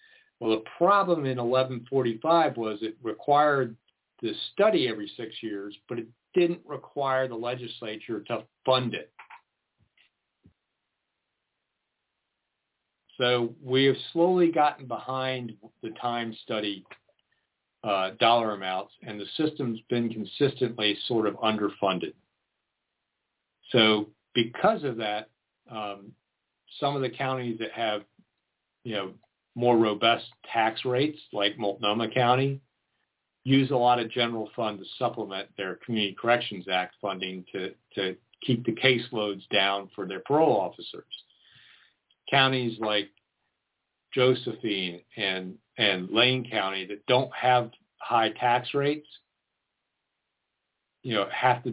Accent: American